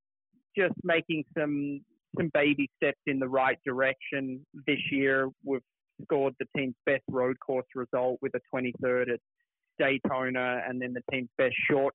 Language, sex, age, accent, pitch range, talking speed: English, male, 30-49, Australian, 125-140 Hz, 155 wpm